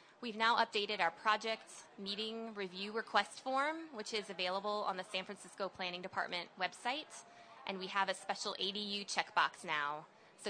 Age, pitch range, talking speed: 20-39, 185-230 Hz, 160 wpm